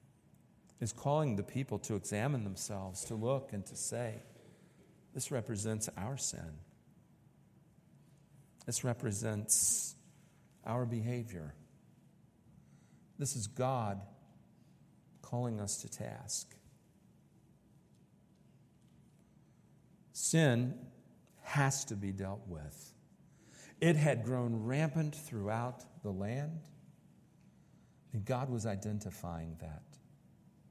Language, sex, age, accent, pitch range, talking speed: English, male, 50-69, American, 110-150 Hz, 90 wpm